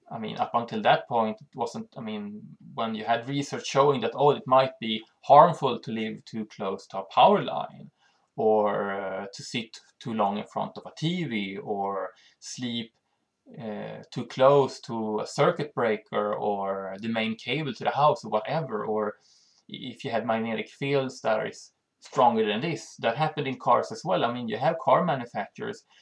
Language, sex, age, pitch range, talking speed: English, male, 20-39, 110-145 Hz, 185 wpm